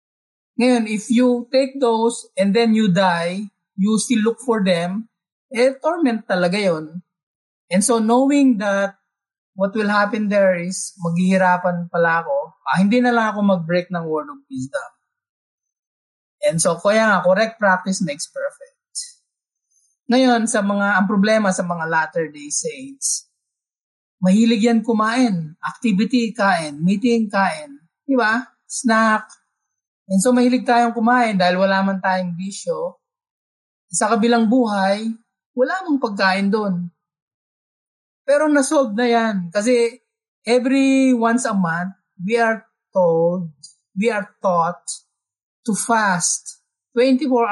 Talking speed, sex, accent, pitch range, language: 130 wpm, male, native, 180-240 Hz, Filipino